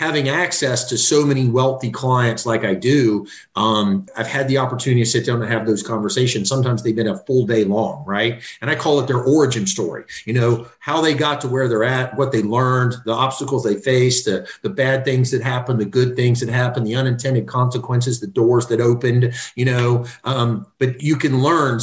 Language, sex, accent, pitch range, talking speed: English, male, American, 115-130 Hz, 215 wpm